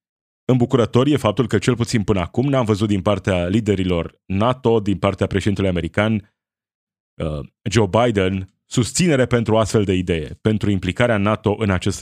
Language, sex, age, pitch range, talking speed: Romanian, male, 20-39, 100-135 Hz, 150 wpm